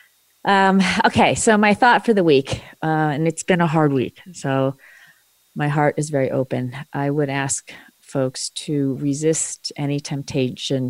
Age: 40-59